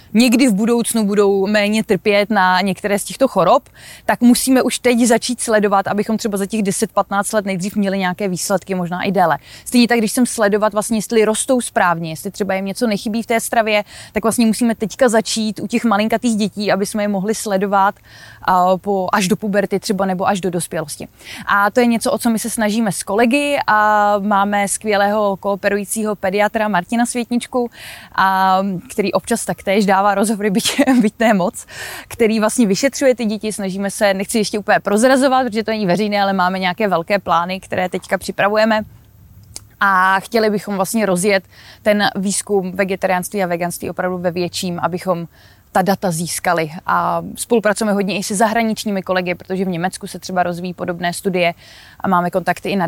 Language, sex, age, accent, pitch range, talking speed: Czech, female, 20-39, native, 185-220 Hz, 175 wpm